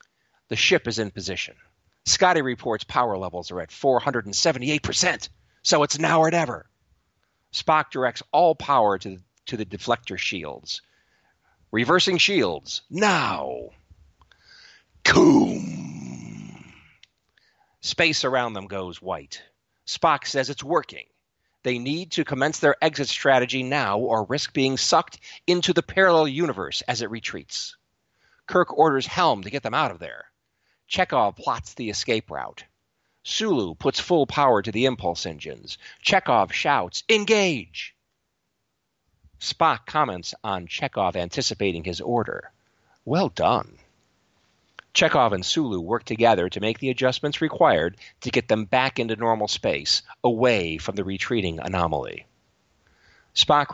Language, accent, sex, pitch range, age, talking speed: English, American, male, 100-145 Hz, 40-59, 130 wpm